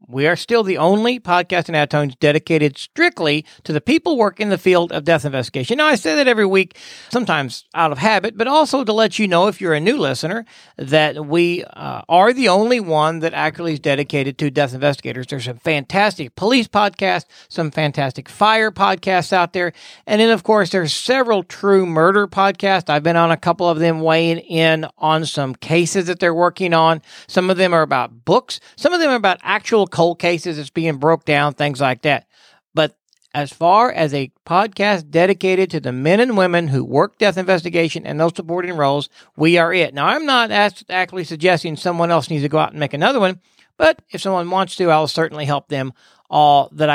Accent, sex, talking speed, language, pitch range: American, male, 205 wpm, English, 150-195 Hz